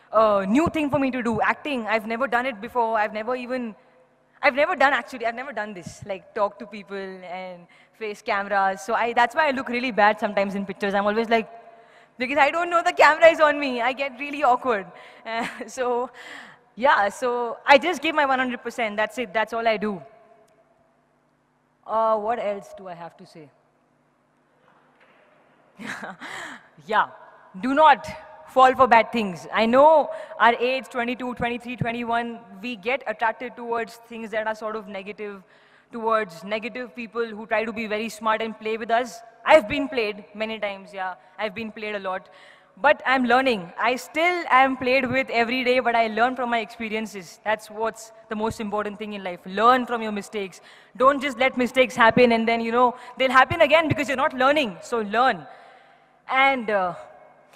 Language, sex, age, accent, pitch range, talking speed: English, female, 20-39, Indian, 210-255 Hz, 185 wpm